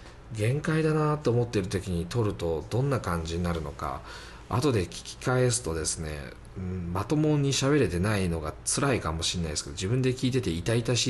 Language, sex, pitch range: Japanese, male, 85-135 Hz